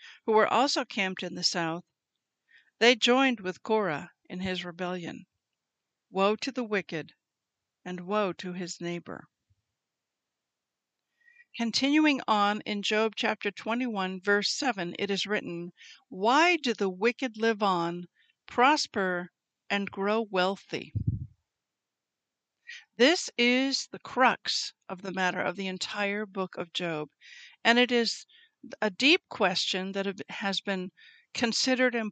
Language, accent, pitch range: English, American, 185-240 Hz